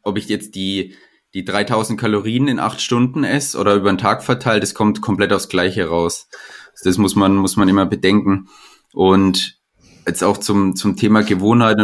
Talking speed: 185 wpm